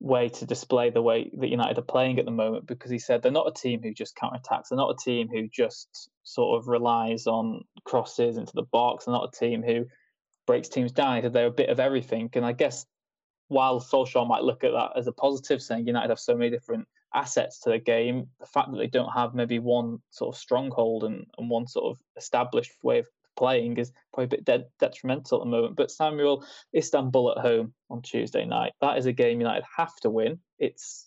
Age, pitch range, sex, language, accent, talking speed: 20-39, 120-145 Hz, male, English, British, 230 wpm